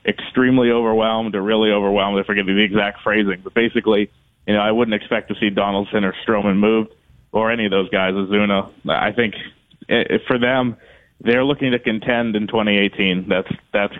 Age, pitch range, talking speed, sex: 30-49, 105-115 Hz, 175 wpm, male